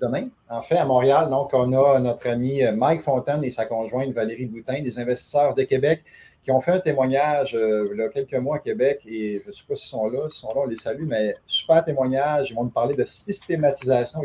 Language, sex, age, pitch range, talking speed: French, male, 30-49, 115-140 Hz, 250 wpm